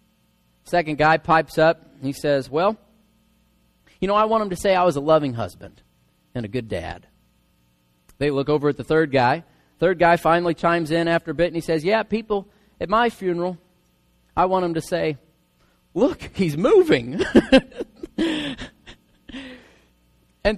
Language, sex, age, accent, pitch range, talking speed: English, male, 40-59, American, 165-245 Hz, 165 wpm